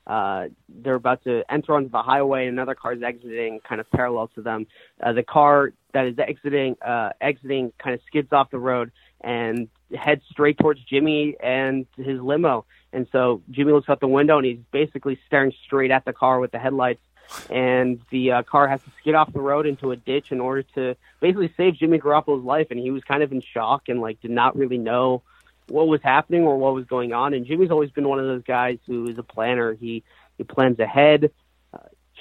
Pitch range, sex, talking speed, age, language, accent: 125-145 Hz, male, 220 wpm, 30-49, English, American